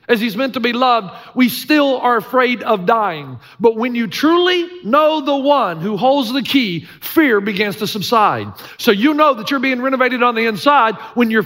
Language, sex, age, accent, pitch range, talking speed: English, male, 40-59, American, 205-260 Hz, 205 wpm